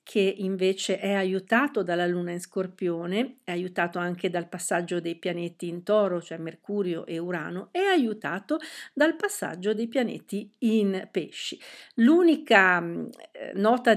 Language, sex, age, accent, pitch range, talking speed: Italian, female, 50-69, native, 175-225 Hz, 135 wpm